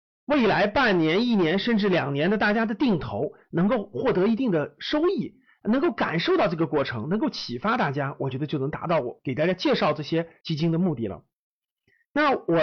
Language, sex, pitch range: Chinese, male, 165-250 Hz